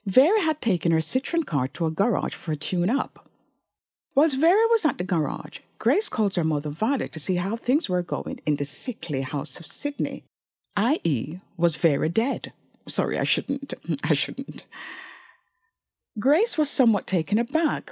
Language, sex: English, female